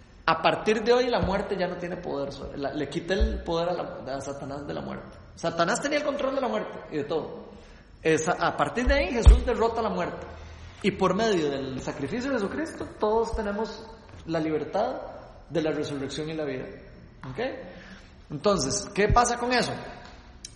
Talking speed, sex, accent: 175 wpm, male, Mexican